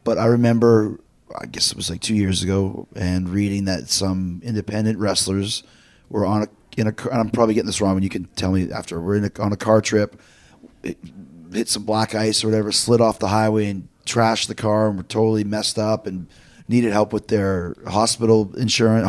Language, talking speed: English, 210 wpm